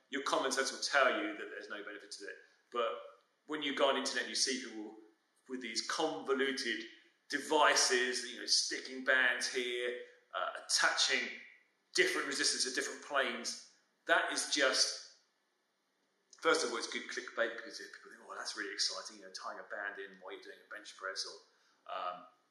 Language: English